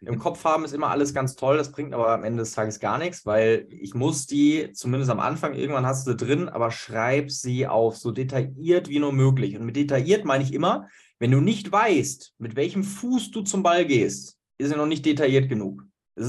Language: German